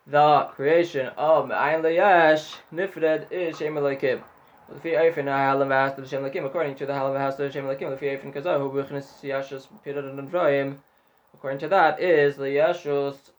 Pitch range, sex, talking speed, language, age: 140-155 Hz, male, 100 wpm, Hebrew, 20-39